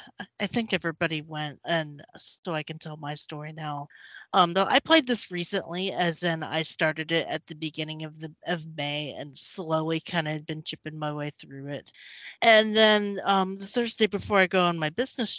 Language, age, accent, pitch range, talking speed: English, 30-49, American, 155-205 Hz, 200 wpm